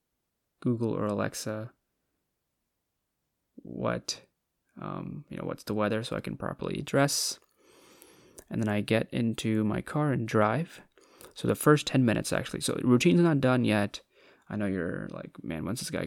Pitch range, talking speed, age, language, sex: 105-125 Hz, 165 wpm, 20-39, English, male